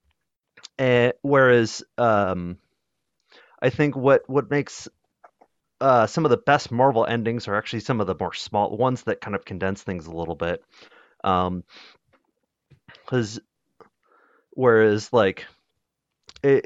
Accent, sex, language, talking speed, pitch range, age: American, male, English, 130 wpm, 105-140 Hz, 30-49